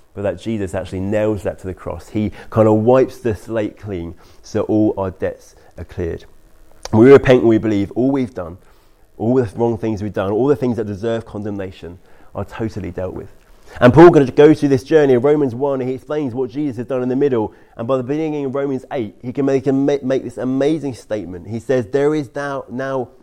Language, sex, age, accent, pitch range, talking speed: English, male, 30-49, British, 100-130 Hz, 230 wpm